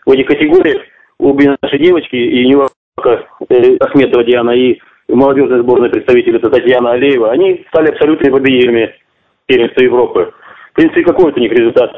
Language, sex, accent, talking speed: Russian, male, native, 160 wpm